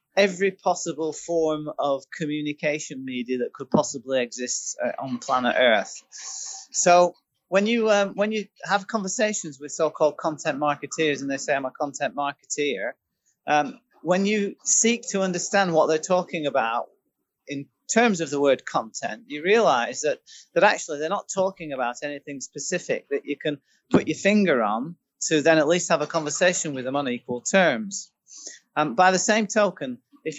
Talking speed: 165 wpm